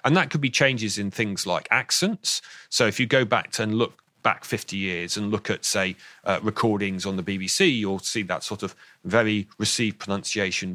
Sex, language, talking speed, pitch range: male, English, 205 wpm, 100-125 Hz